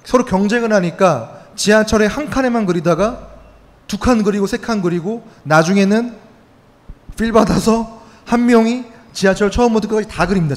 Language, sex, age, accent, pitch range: Korean, male, 30-49, native, 135-195 Hz